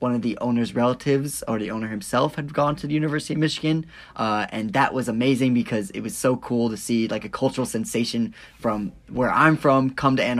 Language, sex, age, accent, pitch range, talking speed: English, male, 10-29, American, 110-130 Hz, 225 wpm